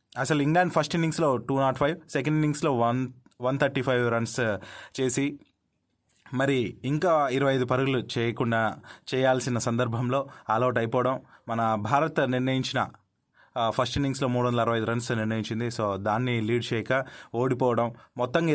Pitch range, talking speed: 115-145 Hz, 115 wpm